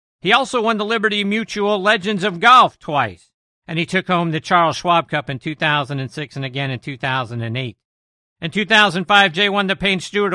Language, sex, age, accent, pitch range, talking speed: English, male, 50-69, American, 145-195 Hz, 180 wpm